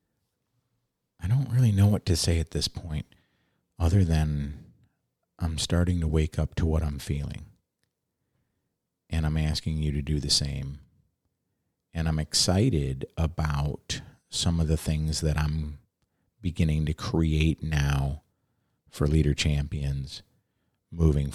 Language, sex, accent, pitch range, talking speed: English, male, American, 70-85 Hz, 130 wpm